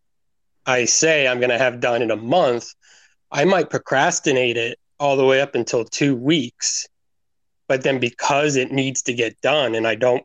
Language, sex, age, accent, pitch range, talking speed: English, male, 30-49, American, 115-140 Hz, 185 wpm